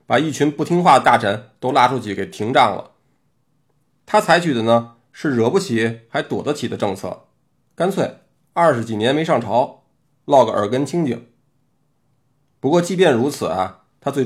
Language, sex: Chinese, male